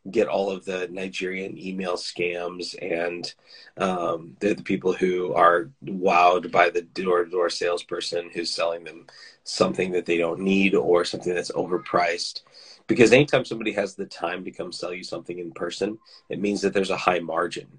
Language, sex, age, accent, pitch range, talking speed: English, male, 30-49, American, 90-100 Hz, 180 wpm